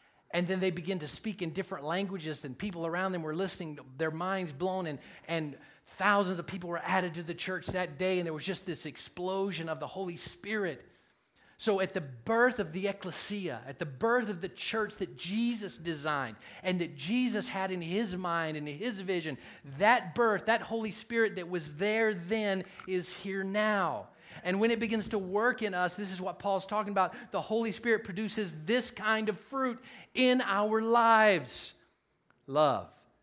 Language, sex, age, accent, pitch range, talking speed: English, male, 30-49, American, 175-215 Hz, 190 wpm